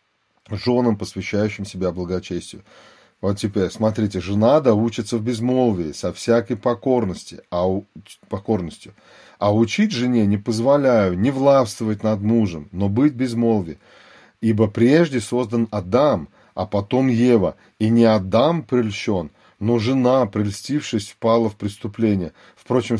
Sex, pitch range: male, 105-120 Hz